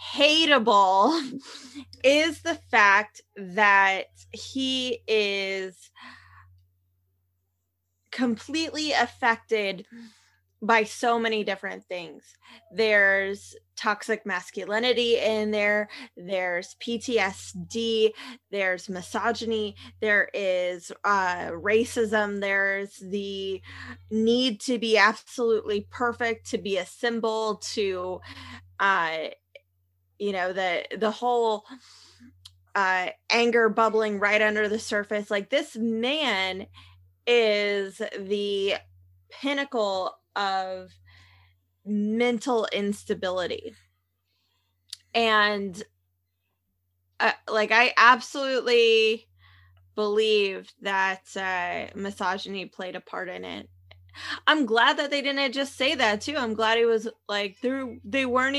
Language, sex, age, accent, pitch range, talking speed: English, female, 20-39, American, 180-235 Hz, 95 wpm